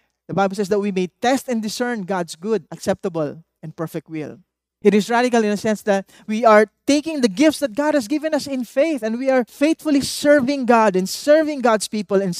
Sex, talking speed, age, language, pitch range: male, 220 wpm, 20-39, English, 190-245 Hz